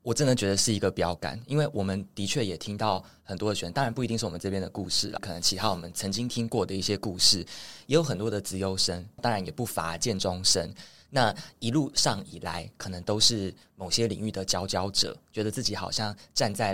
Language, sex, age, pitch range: Chinese, male, 20-39, 95-115 Hz